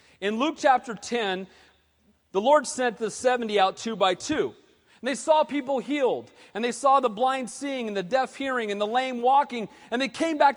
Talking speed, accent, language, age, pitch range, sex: 205 wpm, American, English, 40-59, 210-280 Hz, male